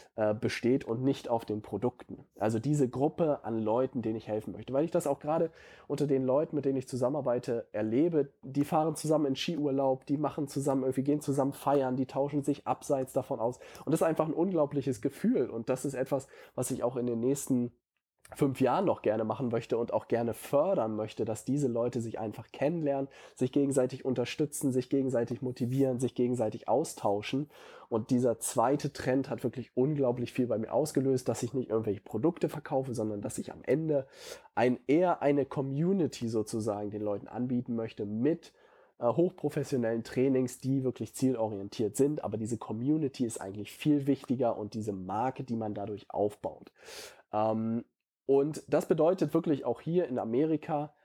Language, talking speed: German, 175 wpm